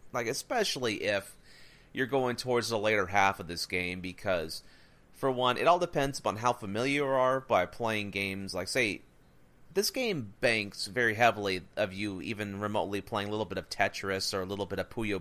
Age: 30-49